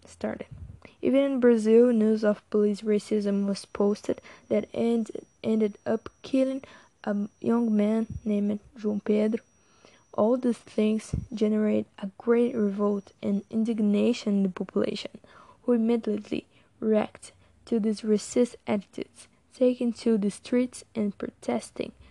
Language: Portuguese